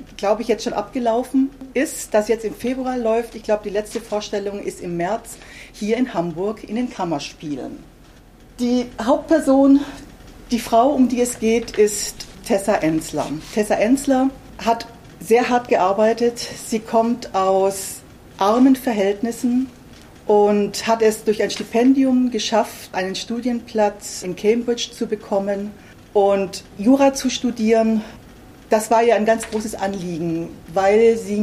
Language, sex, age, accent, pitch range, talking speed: German, female, 40-59, German, 200-240 Hz, 140 wpm